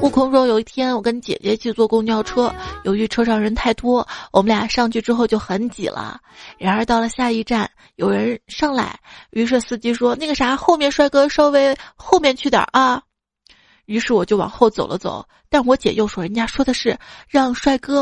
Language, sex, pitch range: Chinese, female, 215-270 Hz